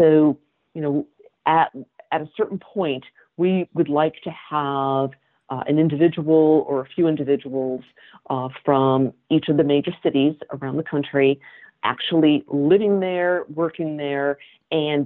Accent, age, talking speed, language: American, 50-69, 145 wpm, English